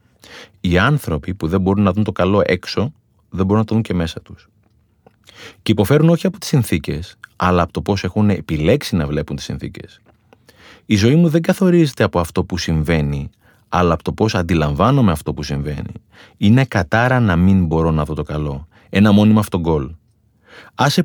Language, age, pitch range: Greek, 30-49, 90-125 Hz